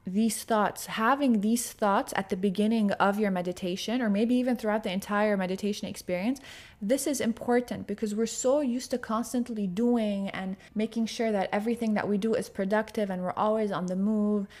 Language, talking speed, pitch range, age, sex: English, 185 wpm, 195-230 Hz, 20-39, female